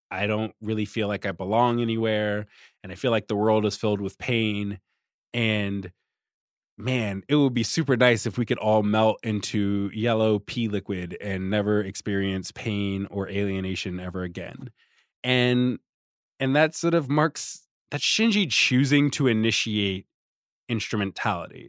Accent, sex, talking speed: American, male, 150 wpm